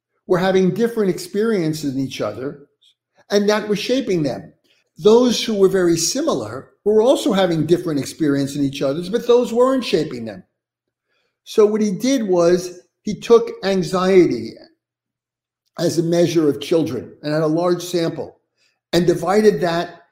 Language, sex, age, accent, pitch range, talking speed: English, male, 50-69, American, 160-195 Hz, 150 wpm